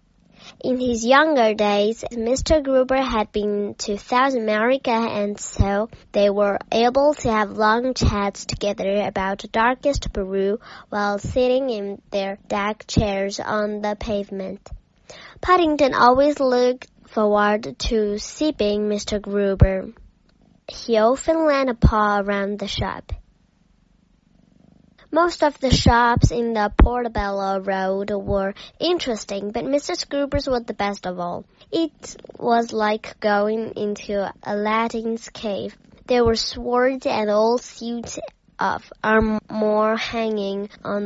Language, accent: Chinese, American